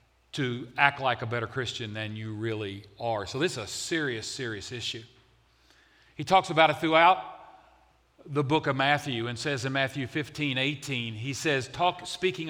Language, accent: English, American